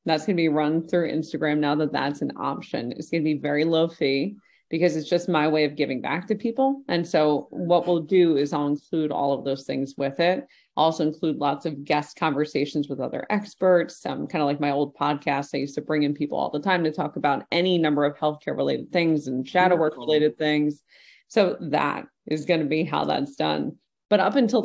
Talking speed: 230 wpm